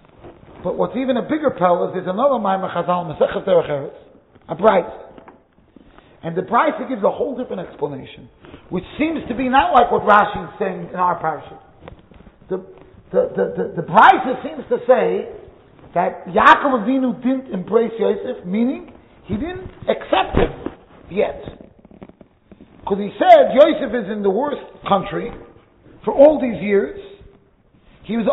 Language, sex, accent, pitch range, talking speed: English, male, American, 210-305 Hz, 150 wpm